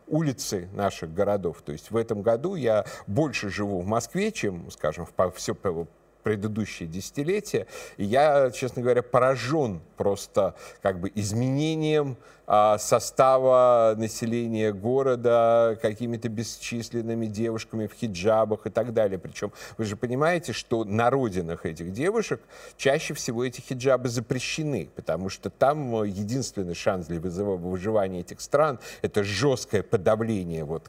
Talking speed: 130 wpm